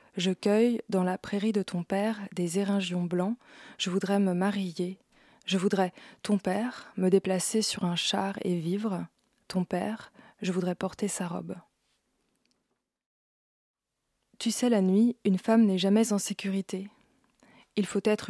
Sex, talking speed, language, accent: female, 150 wpm, French, French